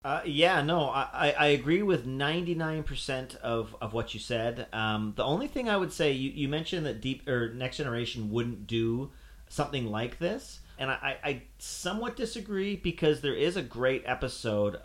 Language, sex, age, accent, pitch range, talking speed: English, male, 40-59, American, 105-125 Hz, 180 wpm